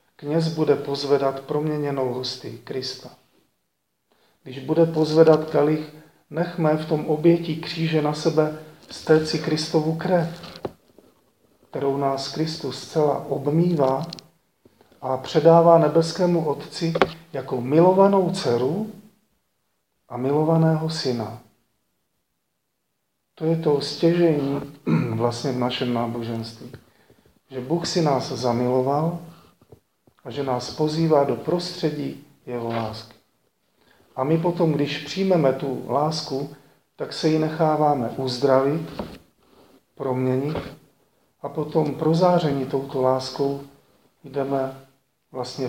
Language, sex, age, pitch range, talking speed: Slovak, male, 40-59, 130-160 Hz, 100 wpm